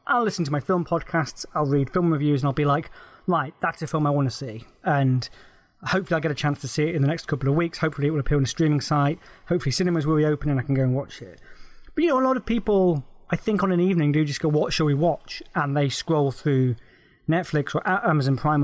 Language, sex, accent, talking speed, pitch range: English, male, British, 265 wpm, 140-175 Hz